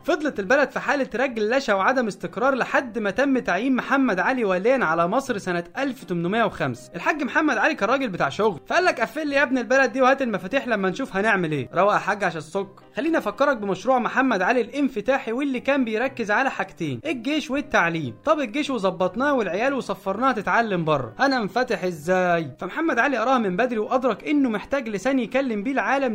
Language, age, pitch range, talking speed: Arabic, 20-39, 190-270 Hz, 180 wpm